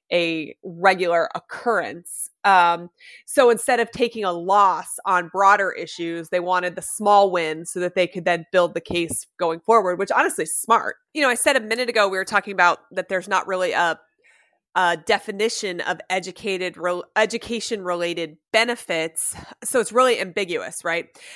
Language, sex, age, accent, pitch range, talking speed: English, female, 30-49, American, 180-225 Hz, 170 wpm